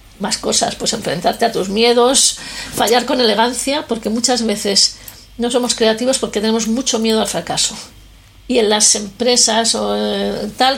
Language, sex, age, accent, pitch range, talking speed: Spanish, female, 40-59, Spanish, 210-245 Hz, 155 wpm